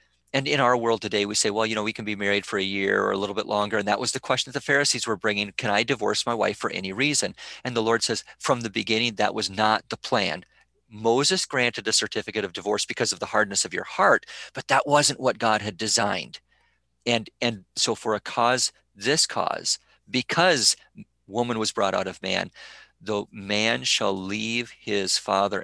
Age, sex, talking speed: 40-59, male, 220 wpm